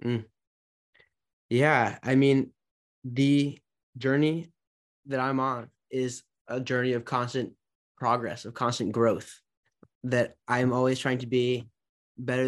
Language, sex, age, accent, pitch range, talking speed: English, male, 10-29, American, 120-135 Hz, 120 wpm